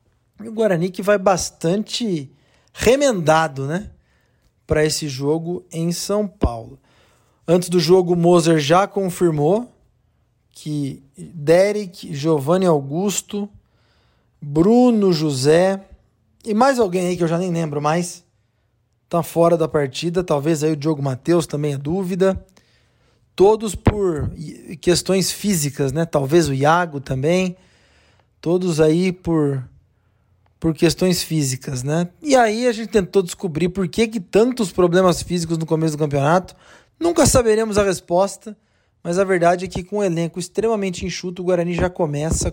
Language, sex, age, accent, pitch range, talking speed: Portuguese, male, 20-39, Brazilian, 150-185 Hz, 140 wpm